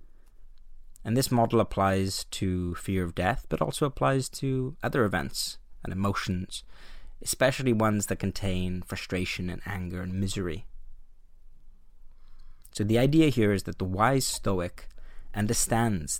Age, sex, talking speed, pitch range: 30-49, male, 130 wpm, 90-110 Hz